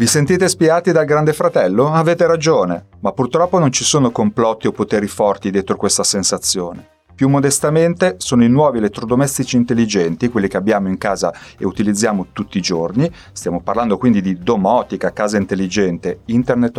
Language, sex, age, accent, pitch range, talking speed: Italian, male, 30-49, native, 95-125 Hz, 160 wpm